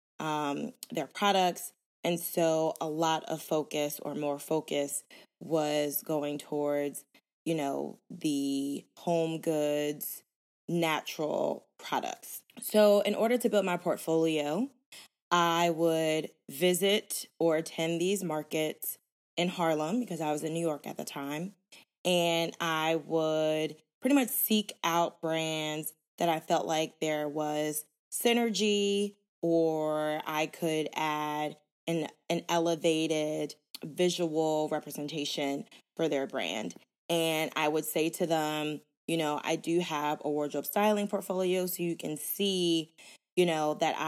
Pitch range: 150-180 Hz